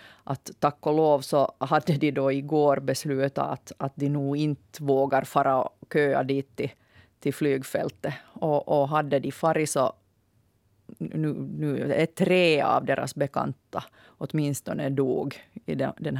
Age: 30-49